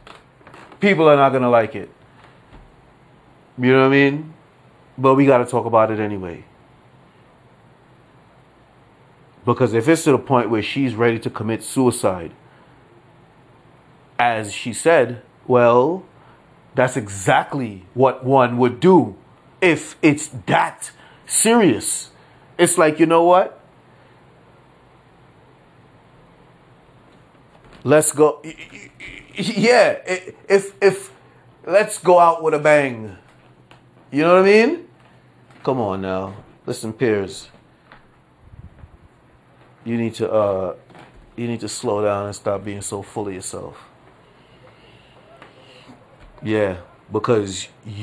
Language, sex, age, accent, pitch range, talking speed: English, male, 30-49, American, 115-165 Hz, 115 wpm